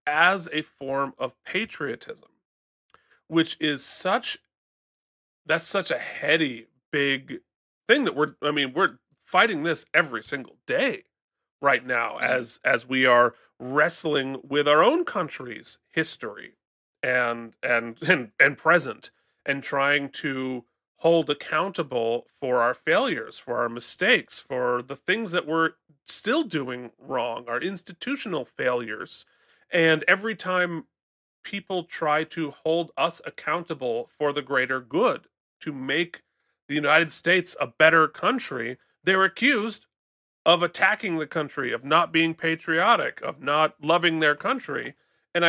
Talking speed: 130 wpm